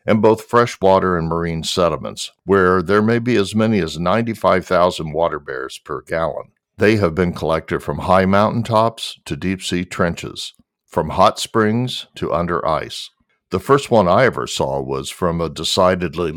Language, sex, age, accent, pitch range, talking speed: English, male, 60-79, American, 85-105 Hz, 170 wpm